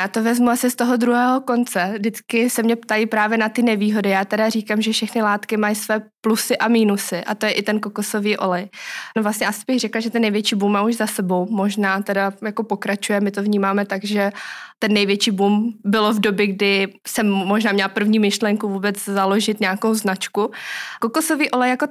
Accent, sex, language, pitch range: native, female, Czech, 200-225 Hz